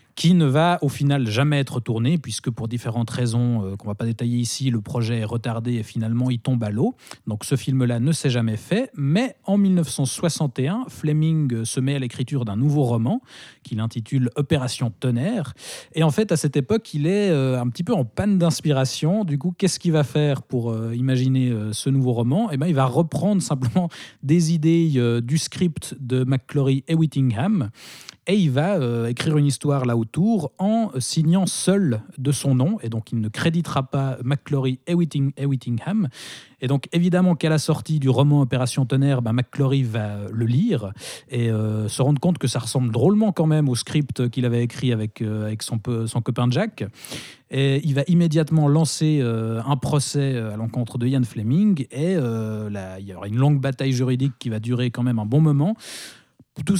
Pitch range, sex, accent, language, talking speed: 120-160 Hz, male, French, French, 205 wpm